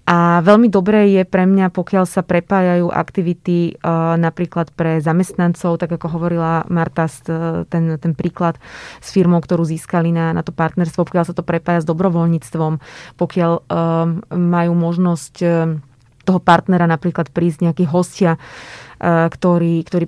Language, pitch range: Slovak, 165-180 Hz